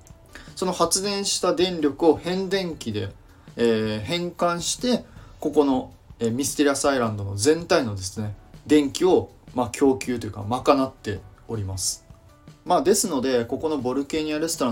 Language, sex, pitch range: Japanese, male, 110-145 Hz